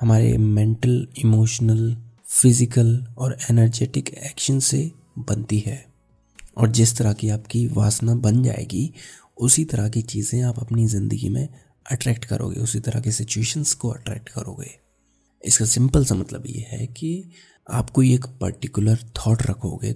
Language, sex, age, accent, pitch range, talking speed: Hindi, male, 30-49, native, 110-125 Hz, 145 wpm